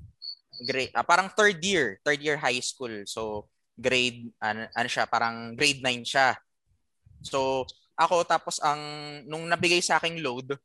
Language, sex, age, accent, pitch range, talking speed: Filipino, male, 20-39, native, 130-160 Hz, 150 wpm